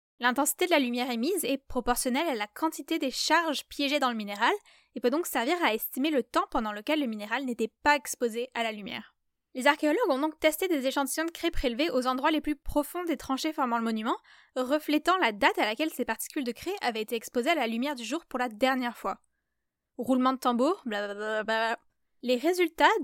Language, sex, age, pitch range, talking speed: French, female, 10-29, 245-310 Hz, 210 wpm